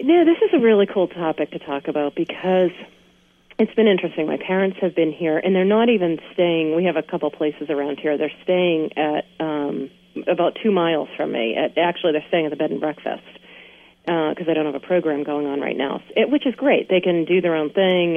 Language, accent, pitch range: English, American, 155-195 Hz